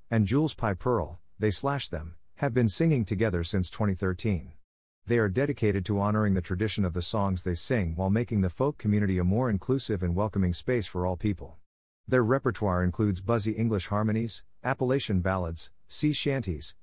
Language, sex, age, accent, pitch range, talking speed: English, male, 50-69, American, 90-115 Hz, 175 wpm